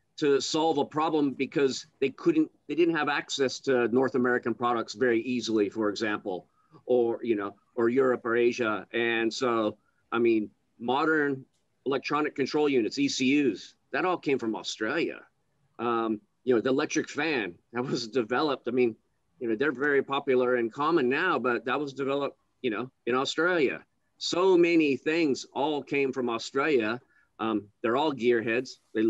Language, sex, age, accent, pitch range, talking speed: English, male, 40-59, American, 115-140 Hz, 165 wpm